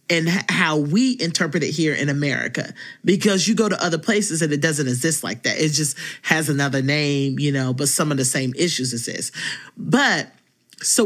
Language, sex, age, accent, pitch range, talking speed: English, male, 40-59, American, 145-190 Hz, 195 wpm